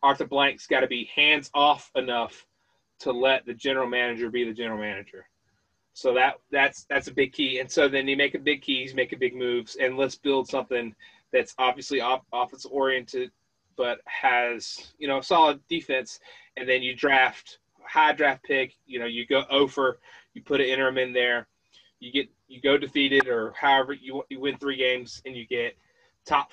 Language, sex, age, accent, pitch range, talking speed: English, male, 30-49, American, 125-145 Hz, 190 wpm